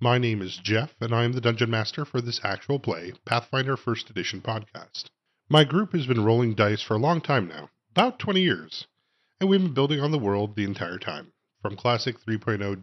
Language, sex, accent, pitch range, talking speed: English, male, American, 105-140 Hz, 210 wpm